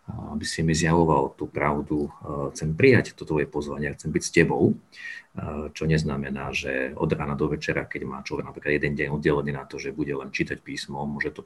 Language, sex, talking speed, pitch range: Slovak, male, 200 wpm, 75-95 Hz